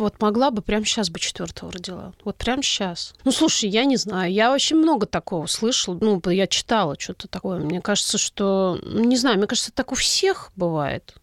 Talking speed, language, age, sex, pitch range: 205 wpm, Russian, 30-49, female, 180-230 Hz